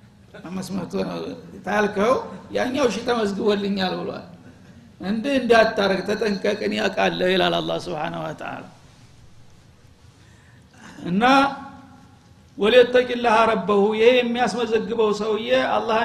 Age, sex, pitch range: 60-79, male, 190-235 Hz